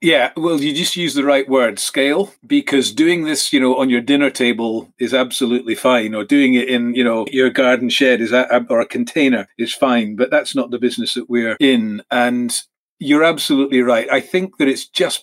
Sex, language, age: male, English, 40-59